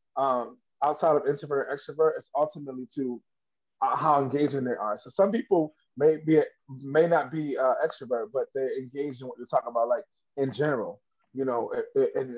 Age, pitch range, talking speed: 20-39, 135-180 Hz, 180 wpm